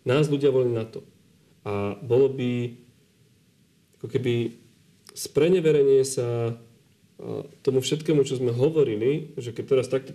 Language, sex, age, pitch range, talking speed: Slovak, male, 40-59, 120-150 Hz, 125 wpm